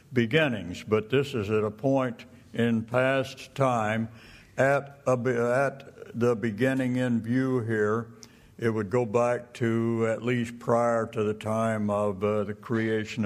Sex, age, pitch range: male, 60-79, 110-125 Hz